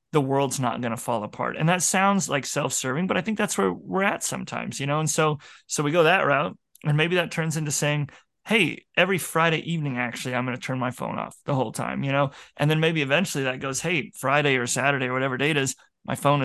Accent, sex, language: American, male, English